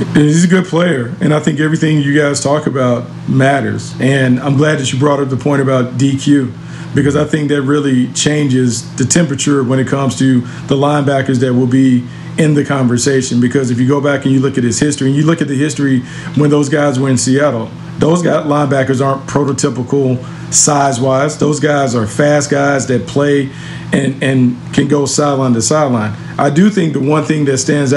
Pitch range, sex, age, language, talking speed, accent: 135-150 Hz, male, 40-59, English, 200 wpm, American